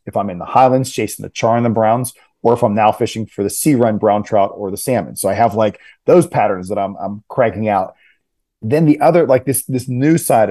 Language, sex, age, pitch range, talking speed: English, male, 30-49, 105-125 Hz, 250 wpm